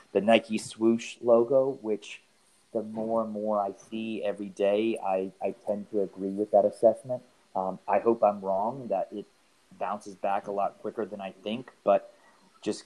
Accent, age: American, 30-49